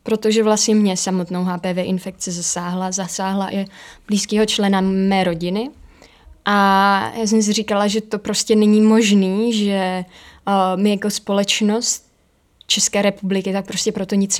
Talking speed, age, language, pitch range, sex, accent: 140 wpm, 20-39, Czech, 190-215 Hz, female, native